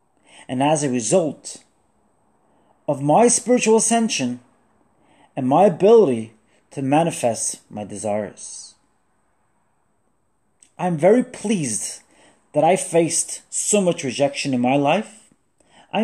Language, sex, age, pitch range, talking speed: English, male, 30-49, 130-215 Hz, 110 wpm